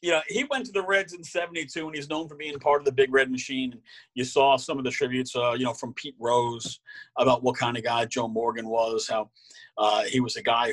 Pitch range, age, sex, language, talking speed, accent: 120-155 Hz, 40-59, male, English, 270 wpm, American